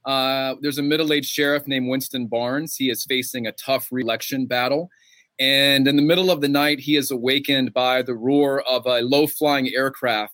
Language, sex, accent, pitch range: English, male, American, 120-145 Hz